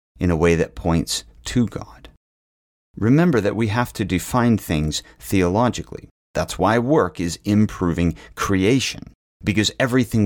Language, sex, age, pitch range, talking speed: English, male, 40-59, 90-125 Hz, 135 wpm